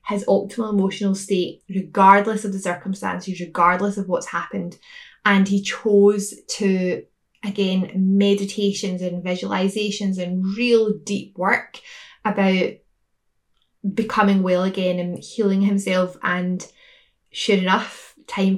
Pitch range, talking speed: 180-205 Hz, 115 wpm